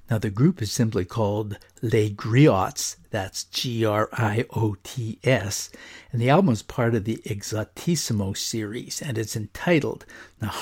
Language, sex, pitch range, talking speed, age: English, male, 105-130 Hz, 130 wpm, 60-79